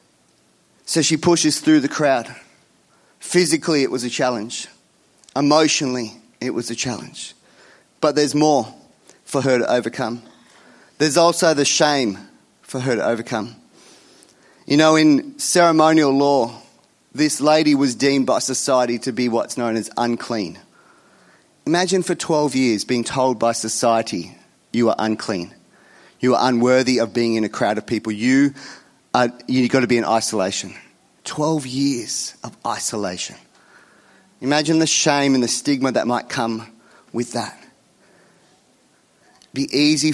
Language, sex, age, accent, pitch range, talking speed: English, male, 30-49, Australian, 120-150 Hz, 140 wpm